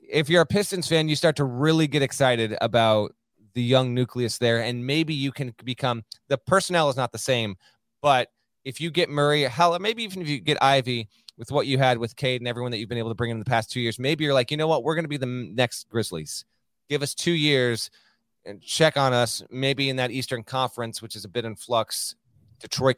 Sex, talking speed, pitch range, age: male, 240 wpm, 120-160 Hz, 30-49